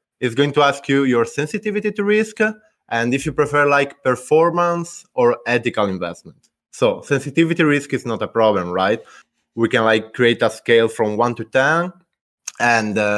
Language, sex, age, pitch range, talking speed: English, male, 20-39, 115-155 Hz, 175 wpm